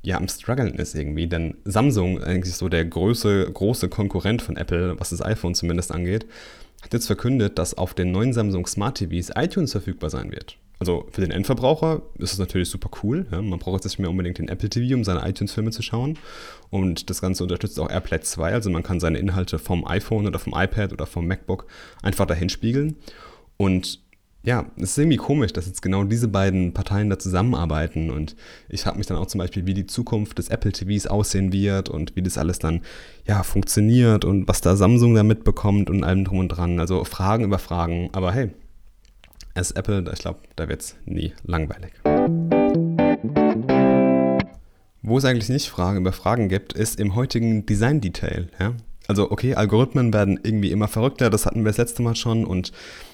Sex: male